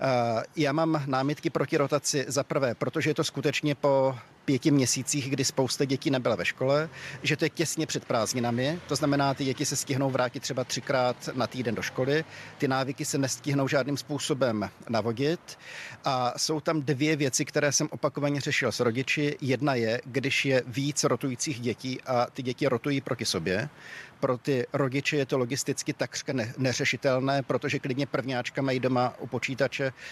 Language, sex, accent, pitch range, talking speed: Czech, male, native, 130-150 Hz, 170 wpm